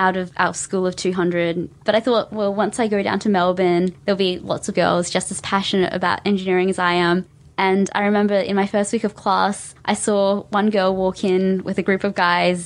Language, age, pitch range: English, 20-39, 185-210 Hz